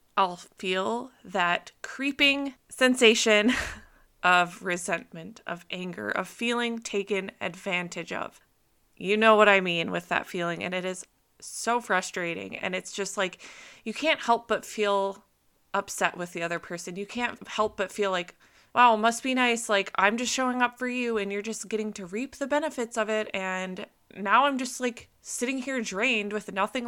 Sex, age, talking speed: female, 20-39, 175 wpm